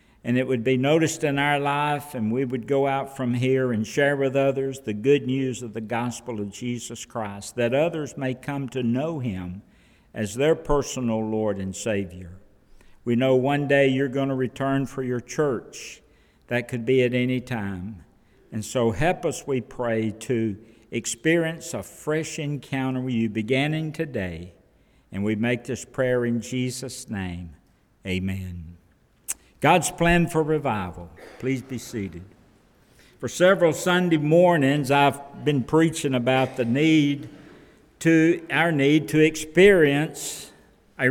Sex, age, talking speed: male, 60-79, 155 wpm